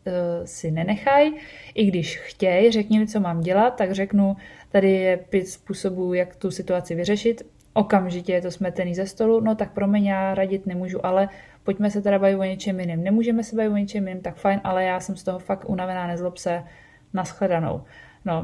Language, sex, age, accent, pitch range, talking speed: Czech, female, 20-39, native, 185-210 Hz, 195 wpm